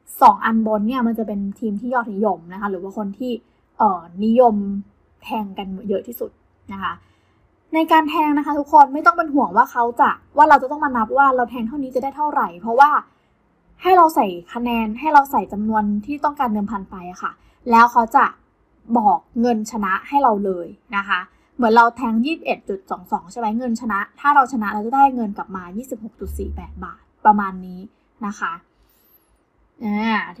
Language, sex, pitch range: Thai, female, 205-260 Hz